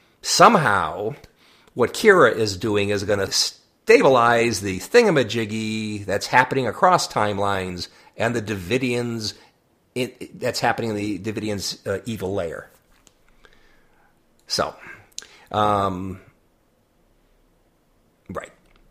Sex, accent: male, American